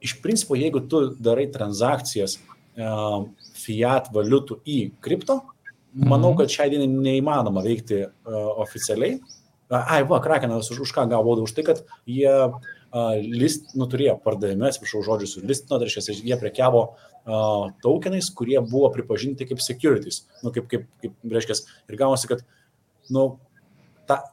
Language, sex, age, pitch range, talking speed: English, male, 30-49, 110-135 Hz, 140 wpm